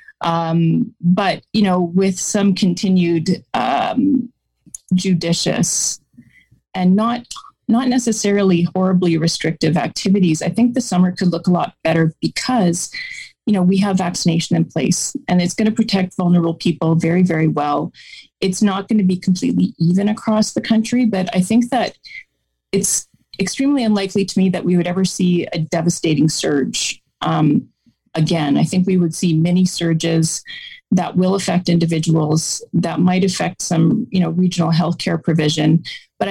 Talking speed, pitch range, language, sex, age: 155 wpm, 165-205 Hz, English, female, 30-49